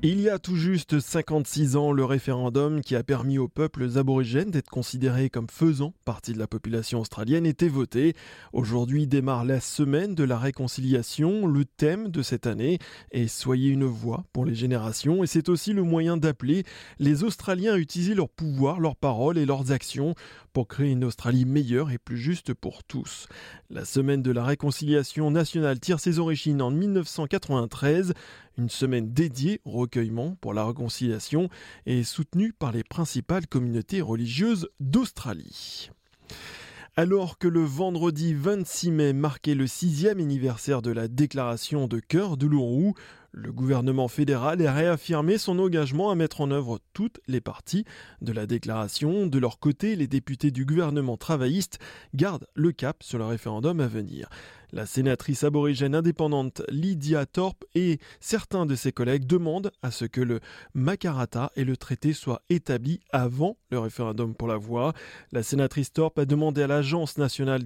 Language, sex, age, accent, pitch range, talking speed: French, male, 20-39, French, 125-165 Hz, 165 wpm